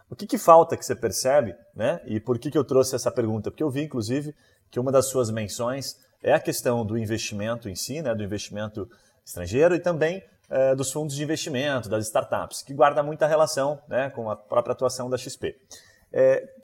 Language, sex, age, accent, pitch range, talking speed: Portuguese, male, 30-49, Brazilian, 115-160 Hz, 210 wpm